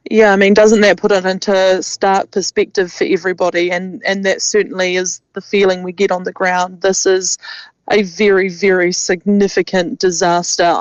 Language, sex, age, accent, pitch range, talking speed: English, female, 20-39, Australian, 180-200 Hz, 170 wpm